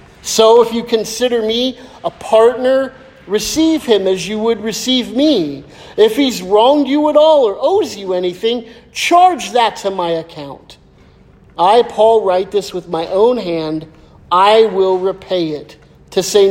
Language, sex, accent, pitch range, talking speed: English, male, American, 165-215 Hz, 155 wpm